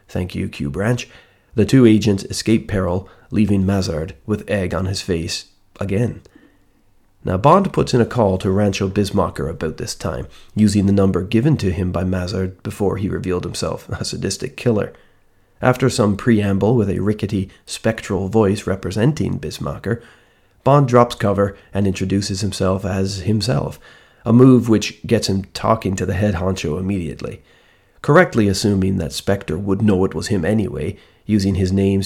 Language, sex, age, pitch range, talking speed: English, male, 30-49, 95-110 Hz, 160 wpm